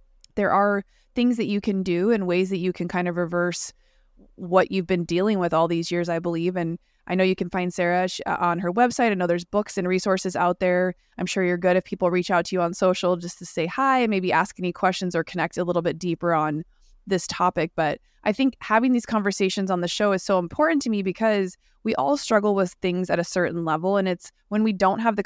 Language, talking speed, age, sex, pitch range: English, 245 wpm, 20-39, female, 175-200 Hz